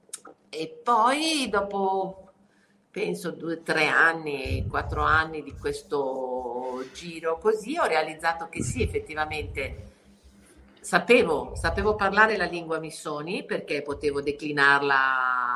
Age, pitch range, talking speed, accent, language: 50-69, 150-225 Hz, 110 wpm, native, Italian